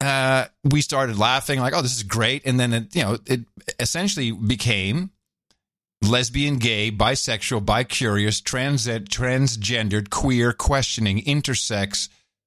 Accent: American